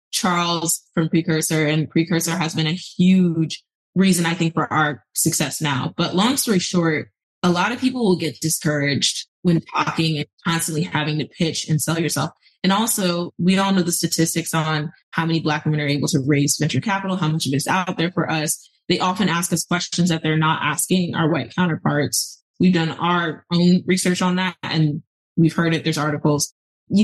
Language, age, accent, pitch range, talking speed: English, 20-39, American, 155-175 Hz, 200 wpm